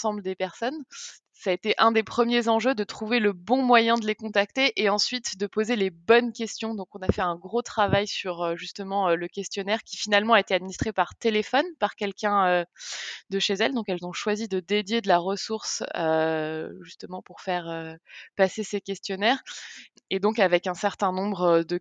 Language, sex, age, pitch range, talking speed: French, female, 20-39, 185-225 Hz, 195 wpm